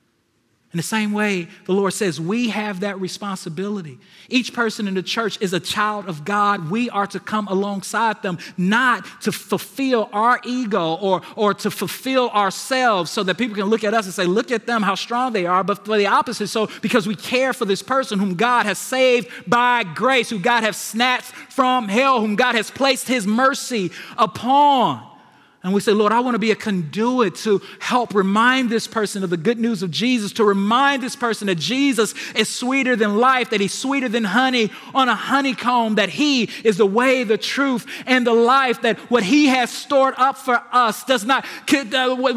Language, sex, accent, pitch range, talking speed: English, male, American, 200-255 Hz, 200 wpm